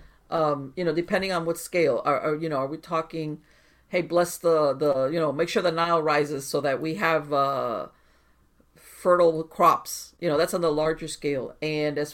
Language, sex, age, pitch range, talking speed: English, female, 50-69, 130-170 Hz, 205 wpm